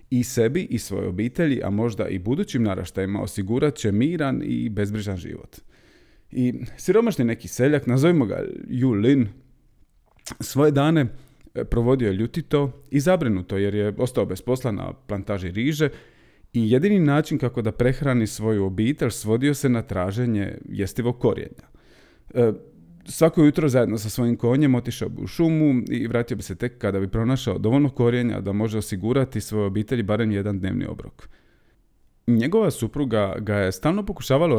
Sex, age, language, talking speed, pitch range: male, 30-49, Croatian, 150 wpm, 105-135 Hz